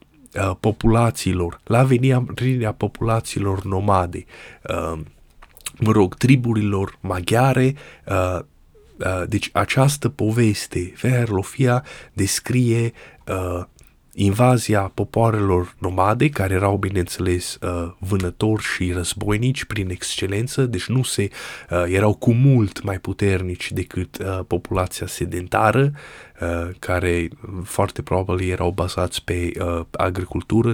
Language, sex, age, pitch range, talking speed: Romanian, male, 20-39, 90-115 Hz, 85 wpm